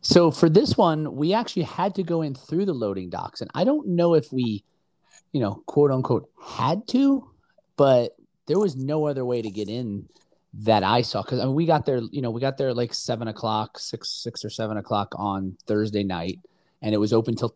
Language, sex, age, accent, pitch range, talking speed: English, male, 30-49, American, 105-135 Hz, 220 wpm